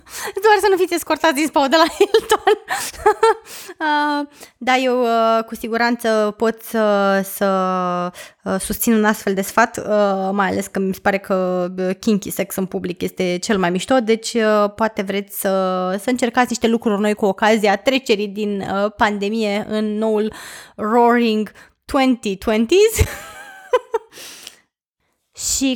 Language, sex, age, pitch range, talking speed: Romanian, female, 20-39, 205-240 Hz, 130 wpm